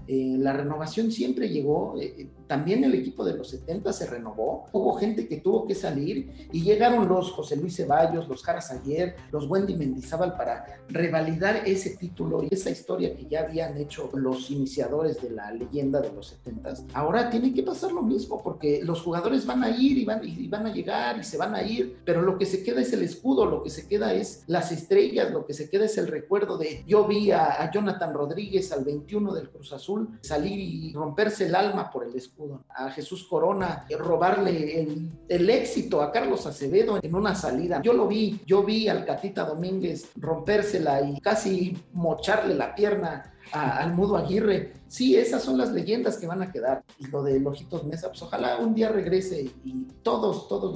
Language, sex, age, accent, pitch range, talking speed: Spanish, male, 50-69, Mexican, 150-210 Hz, 200 wpm